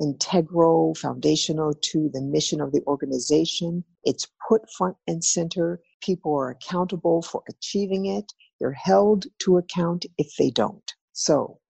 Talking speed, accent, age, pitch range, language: 140 wpm, American, 50-69, 145-190 Hz, English